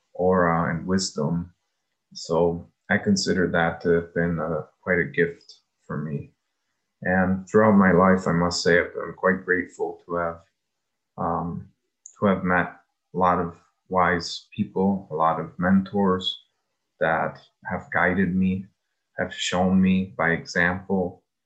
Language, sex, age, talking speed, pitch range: English, male, 20-39, 145 wpm, 85-95 Hz